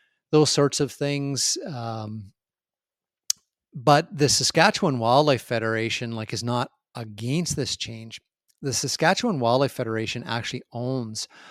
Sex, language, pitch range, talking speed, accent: male, English, 115-135 Hz, 115 wpm, American